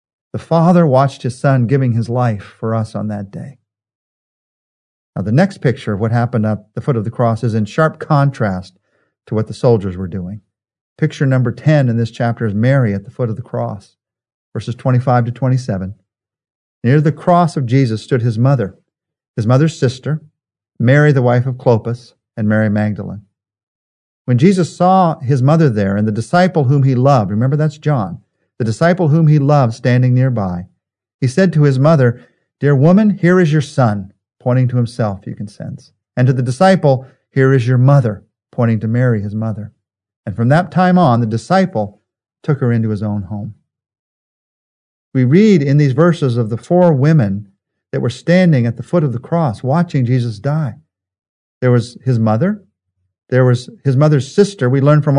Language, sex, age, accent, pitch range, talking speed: English, male, 50-69, American, 110-145 Hz, 185 wpm